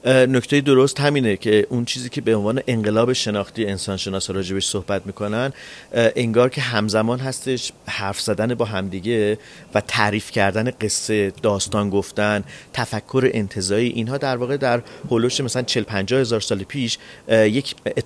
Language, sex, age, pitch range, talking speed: Persian, male, 40-59, 105-125 Hz, 145 wpm